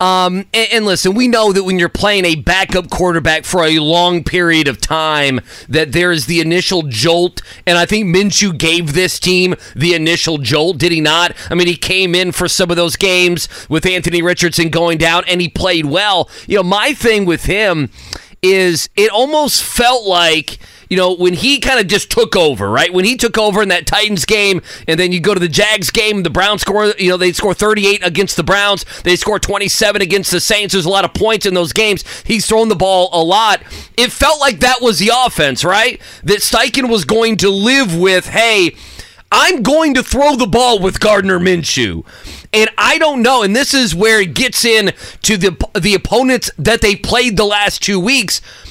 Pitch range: 175-220 Hz